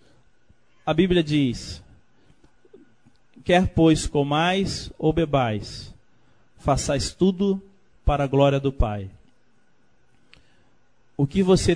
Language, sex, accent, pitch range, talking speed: Portuguese, male, Brazilian, 120-155 Hz, 90 wpm